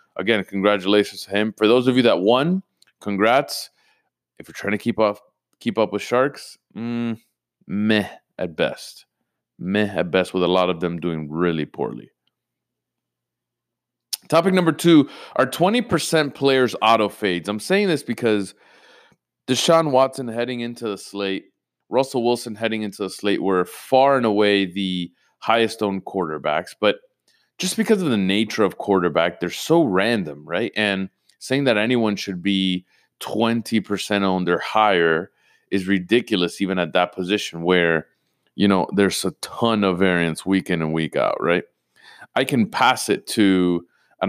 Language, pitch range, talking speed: English, 90-120 Hz, 155 wpm